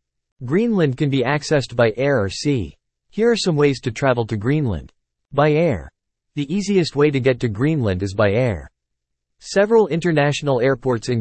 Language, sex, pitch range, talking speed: English, male, 105-150 Hz, 170 wpm